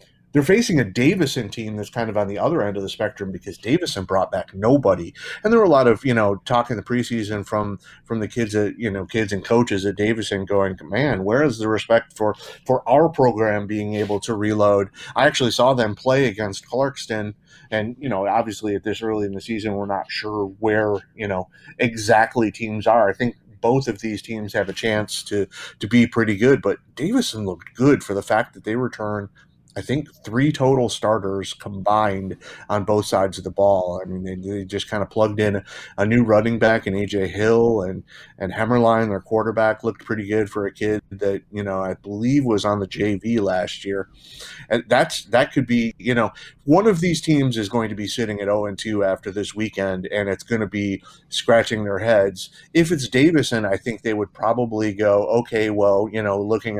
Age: 30-49